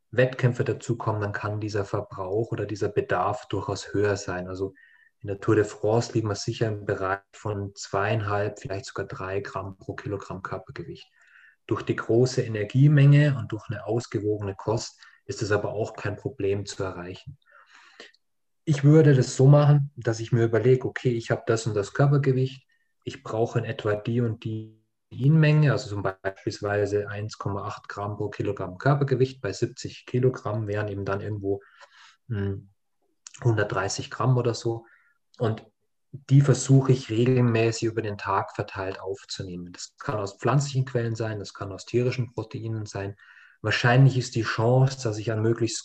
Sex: male